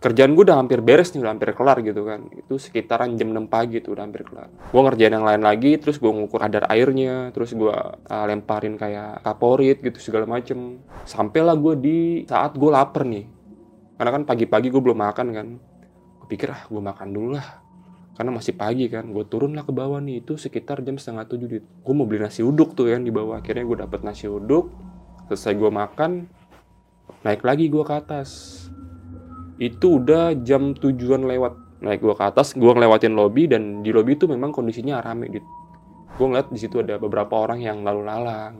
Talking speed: 195 wpm